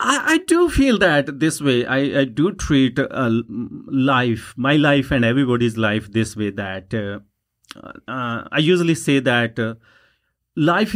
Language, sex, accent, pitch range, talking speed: English, male, Indian, 115-155 Hz, 155 wpm